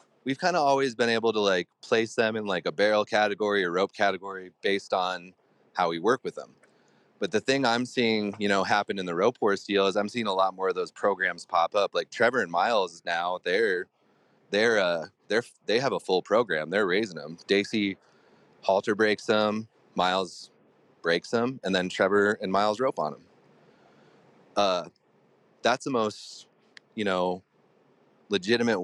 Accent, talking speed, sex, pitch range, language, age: American, 185 wpm, male, 95-115 Hz, English, 30-49